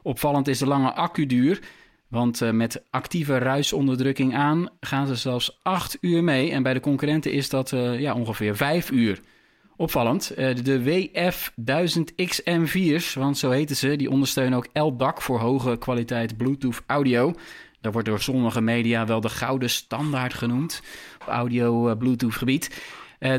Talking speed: 155 wpm